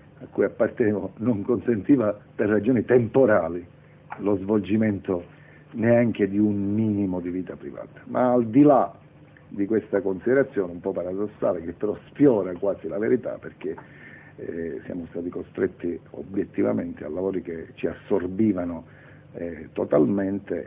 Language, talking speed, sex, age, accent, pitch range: Italian, 135 wpm, male, 50-69, native, 90-115 Hz